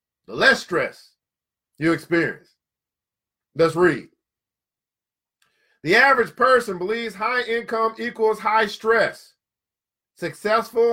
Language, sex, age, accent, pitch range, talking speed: English, male, 40-59, American, 195-235 Hz, 95 wpm